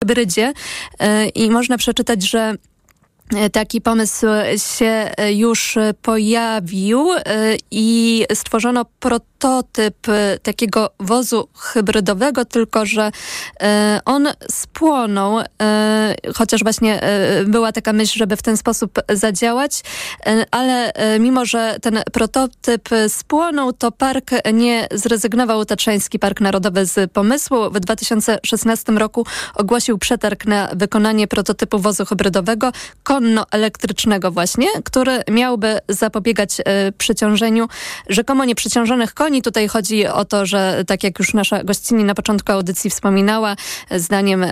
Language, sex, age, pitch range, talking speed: Polish, female, 20-39, 205-230 Hz, 105 wpm